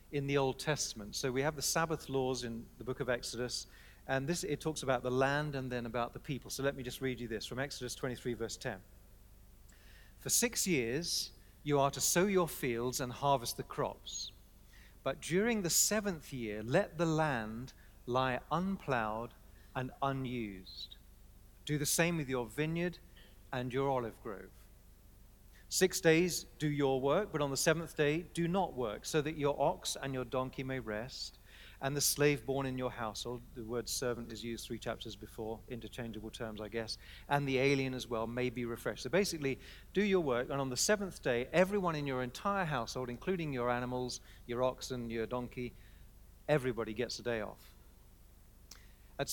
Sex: male